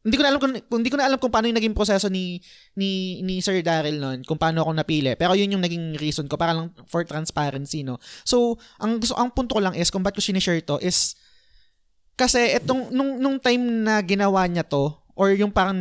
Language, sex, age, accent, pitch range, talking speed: Filipino, male, 20-39, native, 155-210 Hz, 230 wpm